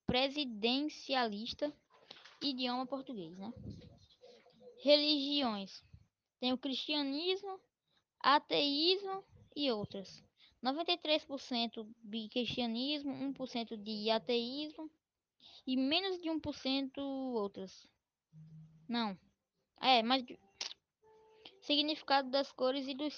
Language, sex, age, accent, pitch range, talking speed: Portuguese, female, 10-29, Brazilian, 245-300 Hz, 80 wpm